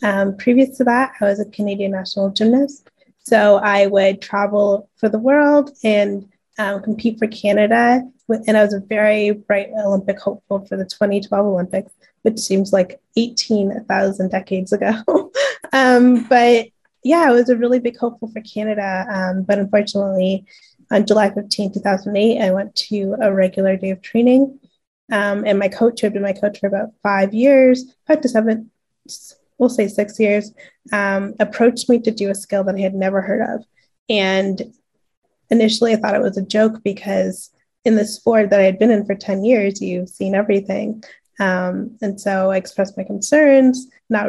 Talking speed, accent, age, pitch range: 175 wpm, American, 20-39, 195-230 Hz